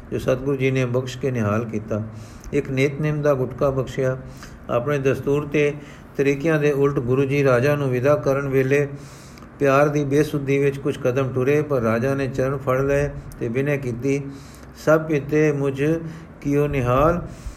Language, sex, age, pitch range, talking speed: Punjabi, male, 50-69, 130-155 Hz, 165 wpm